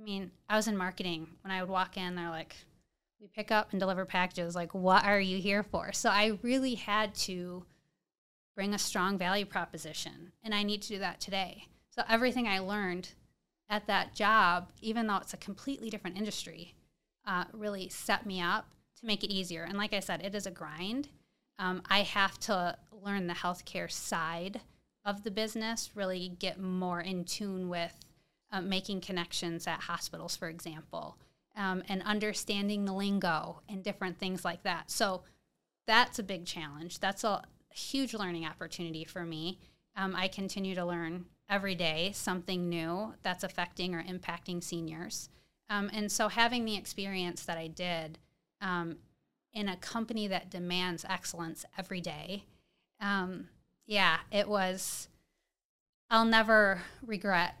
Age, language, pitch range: 20-39, English, 175-205 Hz